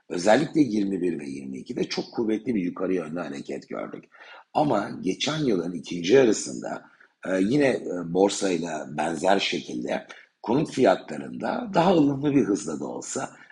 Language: Turkish